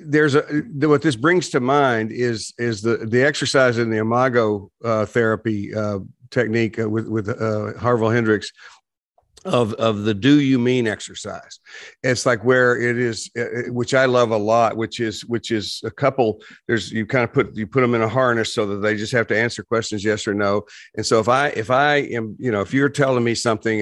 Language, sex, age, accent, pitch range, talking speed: English, male, 50-69, American, 105-125 Hz, 210 wpm